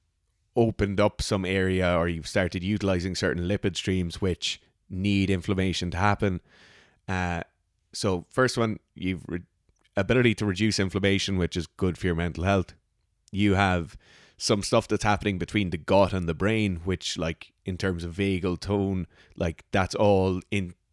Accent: Irish